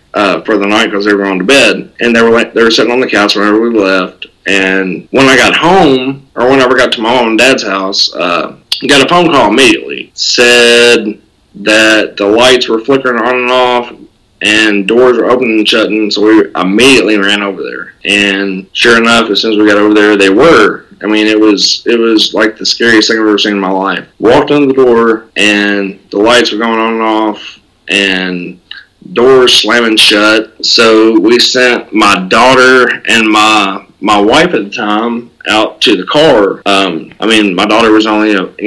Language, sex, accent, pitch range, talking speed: English, male, American, 100-120 Hz, 210 wpm